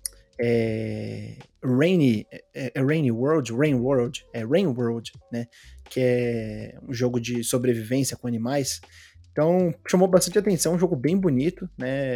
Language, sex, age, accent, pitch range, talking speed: Portuguese, male, 20-39, Brazilian, 120-165 Hz, 130 wpm